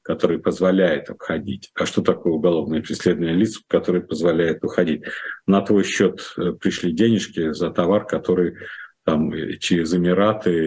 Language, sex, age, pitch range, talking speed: Russian, male, 50-69, 85-100 Hz, 130 wpm